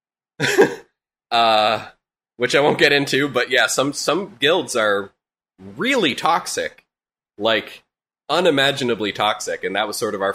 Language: English